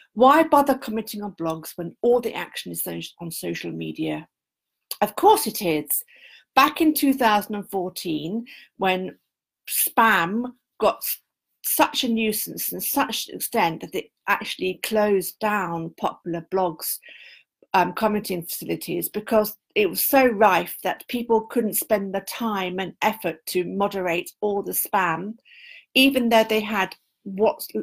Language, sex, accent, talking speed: English, female, British, 135 wpm